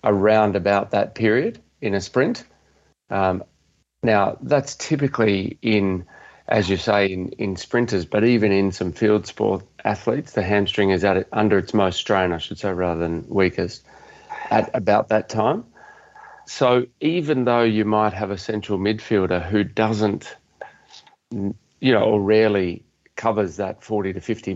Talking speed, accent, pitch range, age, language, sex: 155 wpm, Australian, 95-110 Hz, 40-59, English, male